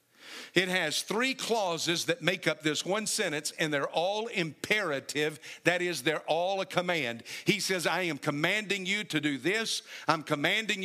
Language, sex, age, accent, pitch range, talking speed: English, male, 50-69, American, 155-200 Hz, 170 wpm